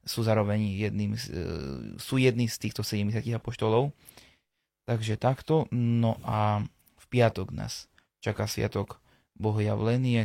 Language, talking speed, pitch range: Slovak, 110 wpm, 105-115 Hz